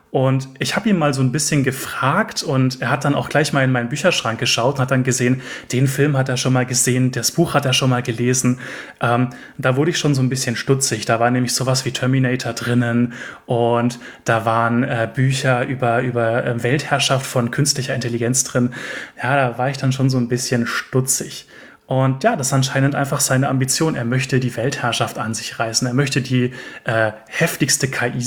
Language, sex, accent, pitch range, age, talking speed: German, male, German, 120-140 Hz, 30-49, 210 wpm